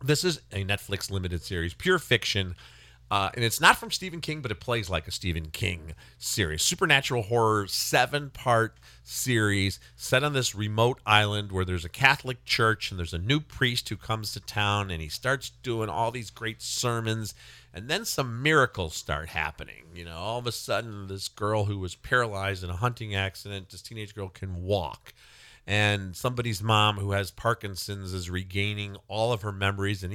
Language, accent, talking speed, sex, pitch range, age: English, American, 185 wpm, male, 95-120 Hz, 40-59